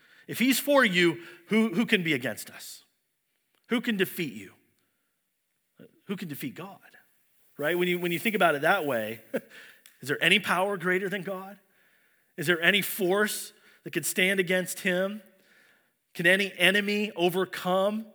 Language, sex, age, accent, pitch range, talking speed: English, male, 40-59, American, 175-225 Hz, 155 wpm